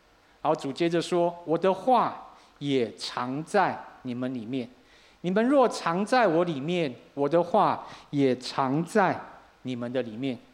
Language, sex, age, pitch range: Chinese, male, 50-69, 140-195 Hz